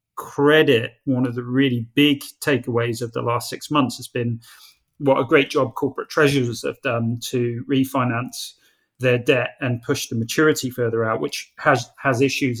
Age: 30-49